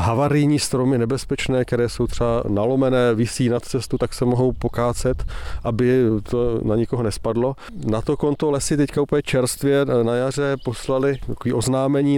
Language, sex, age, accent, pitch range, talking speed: Czech, male, 40-59, native, 120-140 Hz, 150 wpm